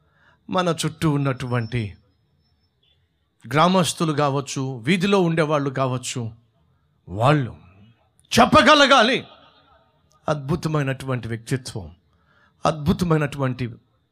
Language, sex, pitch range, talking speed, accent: Telugu, male, 130-200 Hz, 55 wpm, native